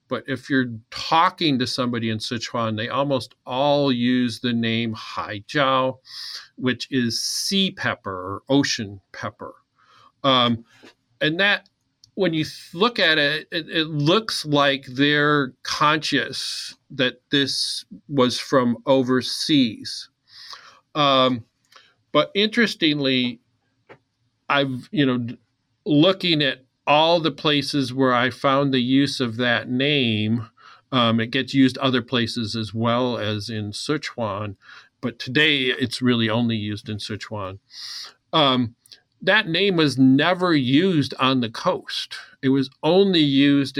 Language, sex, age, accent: English, male, 40-59, American